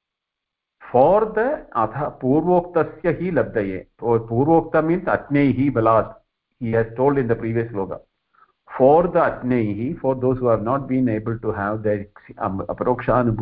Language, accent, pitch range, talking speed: English, Indian, 110-130 Hz, 150 wpm